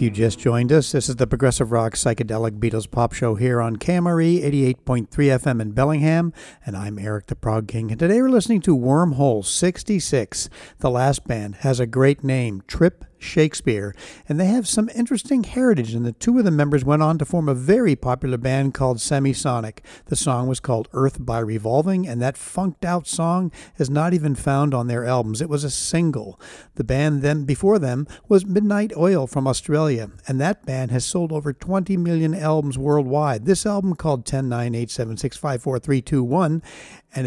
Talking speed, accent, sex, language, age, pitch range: 180 wpm, American, male, English, 60-79, 125-165 Hz